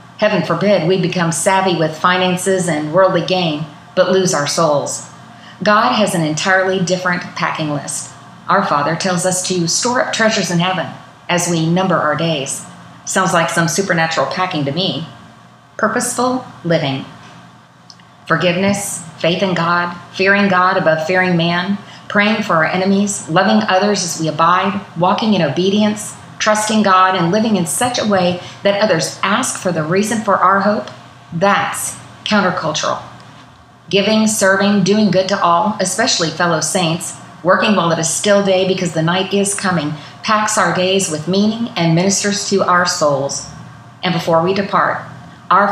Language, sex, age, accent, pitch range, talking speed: English, female, 40-59, American, 165-195 Hz, 160 wpm